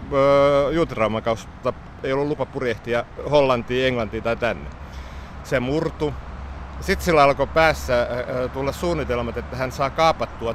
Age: 60-79